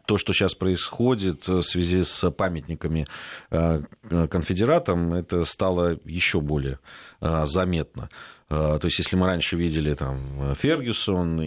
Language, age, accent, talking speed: Russian, 30-49, native, 115 wpm